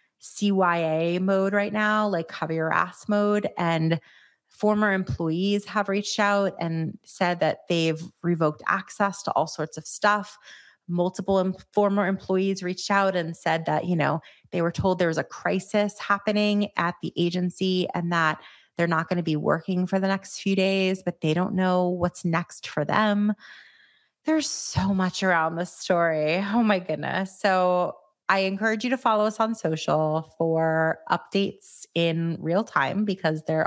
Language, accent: English, American